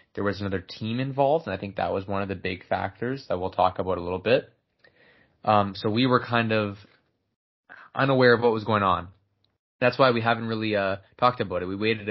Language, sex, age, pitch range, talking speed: English, male, 20-39, 95-110 Hz, 225 wpm